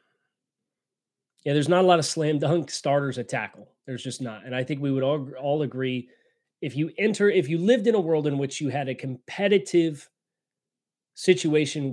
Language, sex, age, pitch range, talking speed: English, male, 30-49, 125-160 Hz, 180 wpm